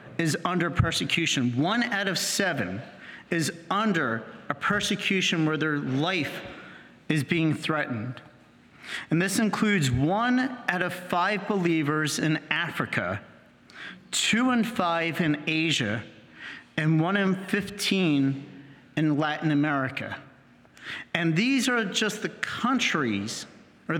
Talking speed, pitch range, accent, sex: 115 wpm, 150-200 Hz, American, male